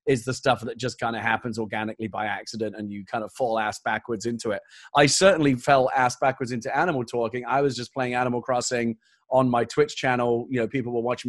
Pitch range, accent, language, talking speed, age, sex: 125-155 Hz, British, English, 230 wpm, 30-49, male